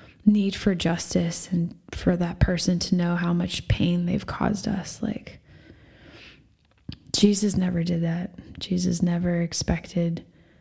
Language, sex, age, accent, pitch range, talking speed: English, female, 20-39, American, 170-195 Hz, 130 wpm